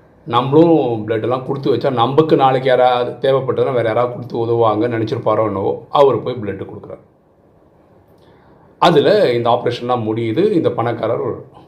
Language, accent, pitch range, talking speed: Tamil, native, 105-145 Hz, 130 wpm